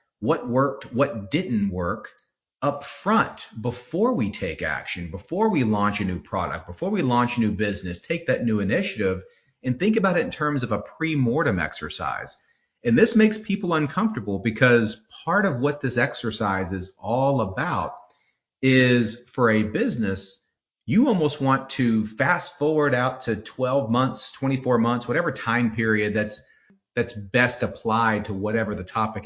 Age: 40-59